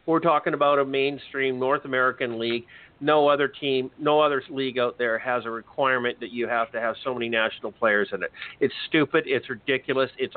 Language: English